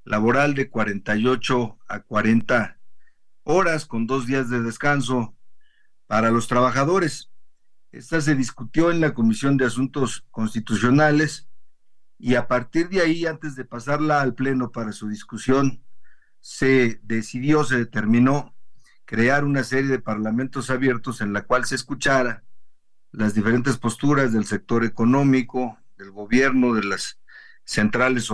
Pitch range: 115-140 Hz